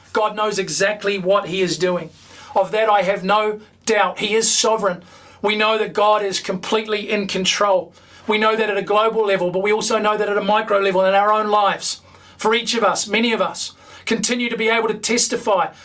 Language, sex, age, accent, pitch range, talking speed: English, male, 40-59, Australian, 195-235 Hz, 215 wpm